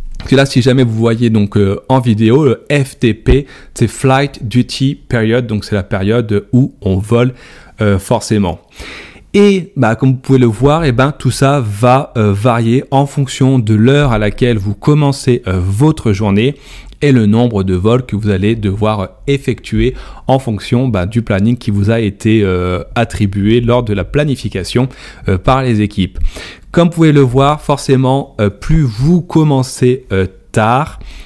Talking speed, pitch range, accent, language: 175 wpm, 105-135 Hz, French, French